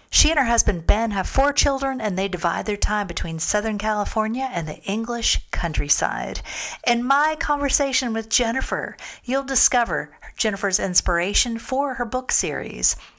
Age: 50-69